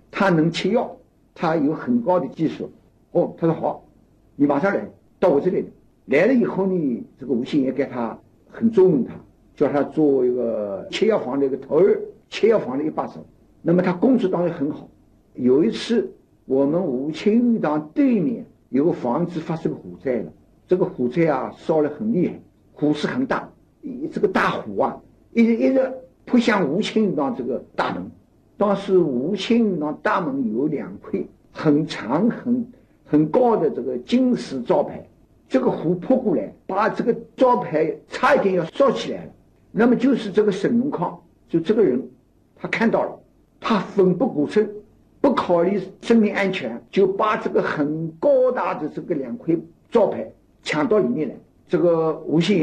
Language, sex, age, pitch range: Chinese, male, 60-79, 155-235 Hz